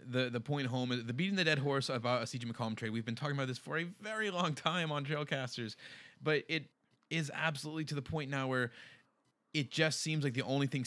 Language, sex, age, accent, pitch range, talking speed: English, male, 20-39, American, 120-150 Hz, 245 wpm